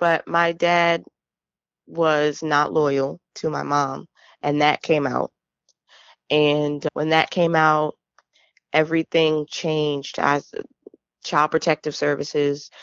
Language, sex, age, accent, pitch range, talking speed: English, female, 20-39, American, 145-165 Hz, 110 wpm